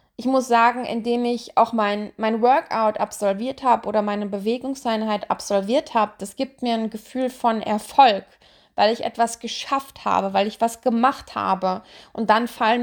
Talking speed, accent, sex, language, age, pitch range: 170 wpm, German, female, German, 20-39, 210-240 Hz